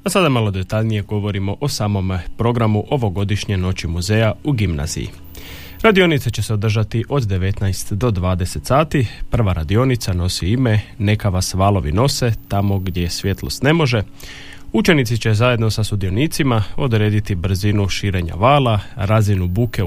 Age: 30-49